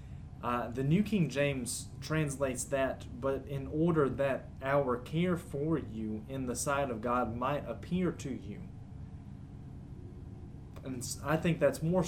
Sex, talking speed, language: male, 145 wpm, English